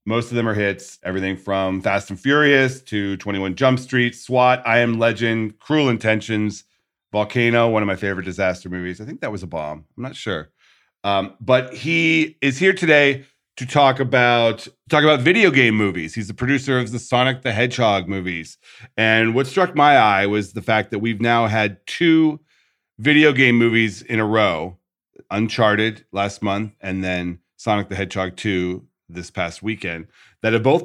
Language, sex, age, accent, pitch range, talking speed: English, male, 40-59, American, 100-130 Hz, 180 wpm